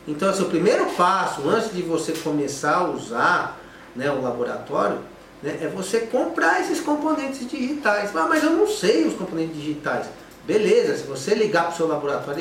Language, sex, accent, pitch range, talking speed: Portuguese, male, Brazilian, 135-205 Hz, 185 wpm